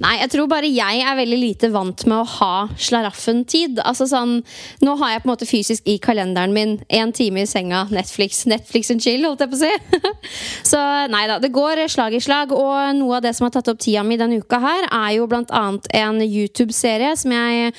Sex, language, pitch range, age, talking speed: female, English, 220-280 Hz, 20-39, 225 wpm